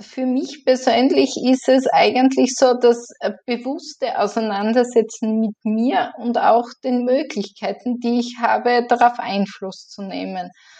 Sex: female